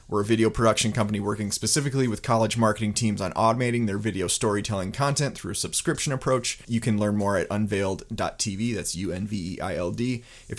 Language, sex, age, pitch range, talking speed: English, male, 30-49, 105-130 Hz, 170 wpm